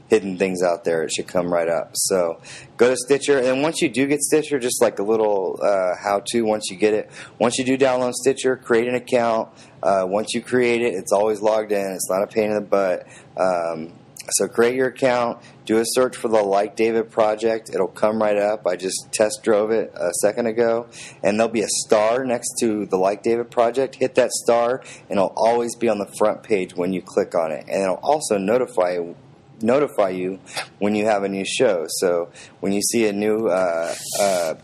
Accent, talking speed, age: American, 220 wpm, 30-49